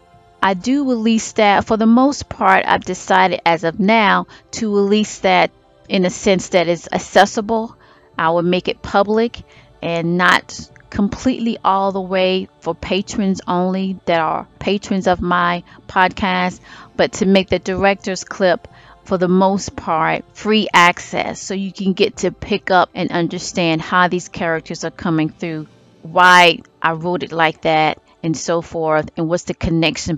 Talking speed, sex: 165 wpm, female